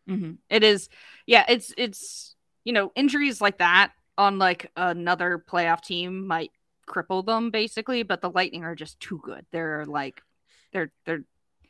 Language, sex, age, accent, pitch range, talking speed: English, female, 20-39, American, 165-210 Hz, 165 wpm